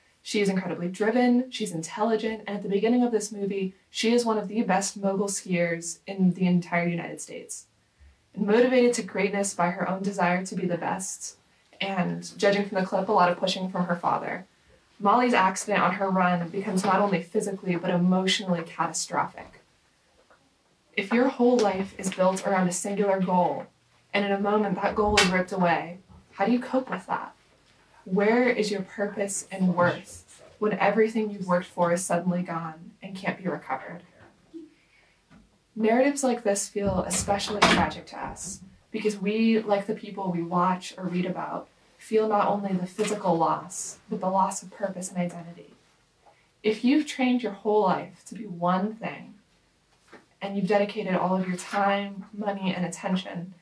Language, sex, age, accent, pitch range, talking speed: English, female, 20-39, American, 180-210 Hz, 175 wpm